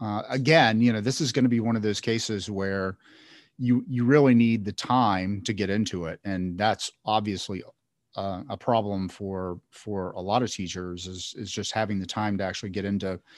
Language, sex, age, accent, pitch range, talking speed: English, male, 40-59, American, 105-125 Hz, 205 wpm